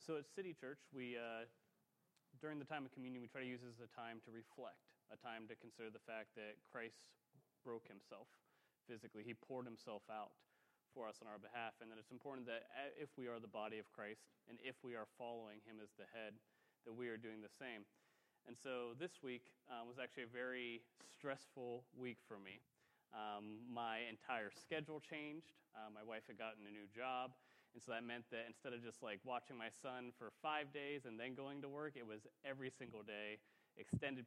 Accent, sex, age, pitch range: American, male, 30-49, 115-140 Hz